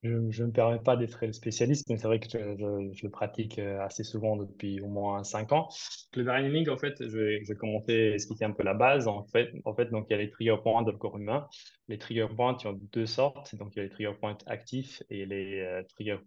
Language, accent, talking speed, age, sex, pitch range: French, French, 255 wpm, 20-39, male, 105-120 Hz